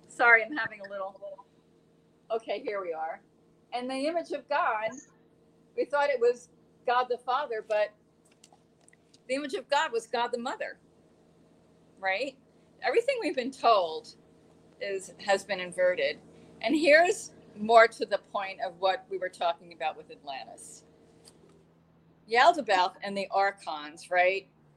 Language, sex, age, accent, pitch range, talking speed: English, female, 40-59, American, 180-235 Hz, 145 wpm